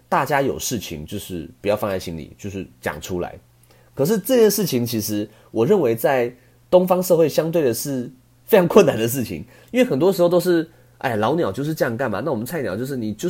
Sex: male